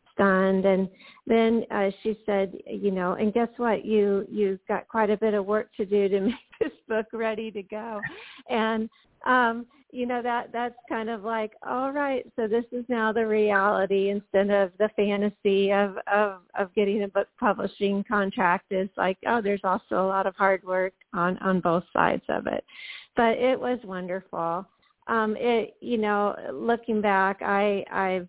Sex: female